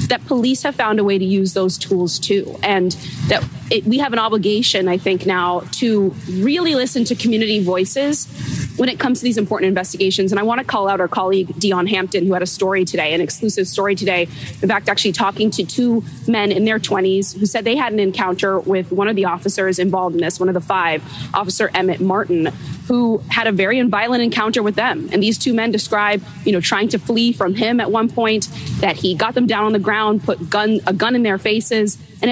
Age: 20-39